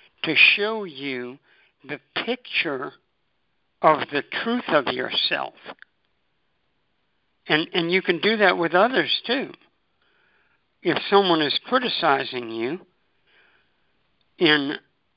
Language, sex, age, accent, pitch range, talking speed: English, male, 60-79, American, 150-190 Hz, 100 wpm